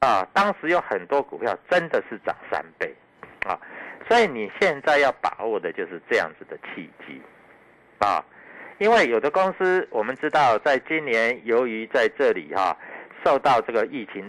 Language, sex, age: Chinese, male, 50-69